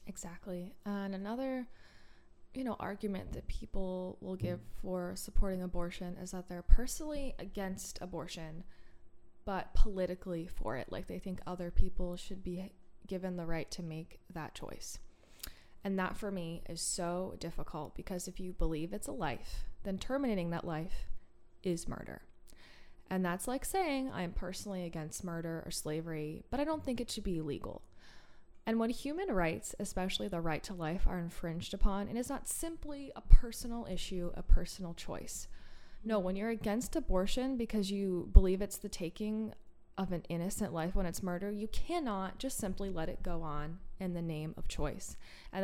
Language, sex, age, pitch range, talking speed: English, female, 20-39, 175-210 Hz, 170 wpm